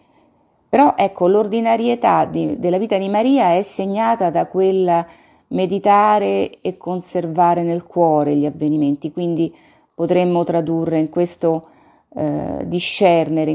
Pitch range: 150-180 Hz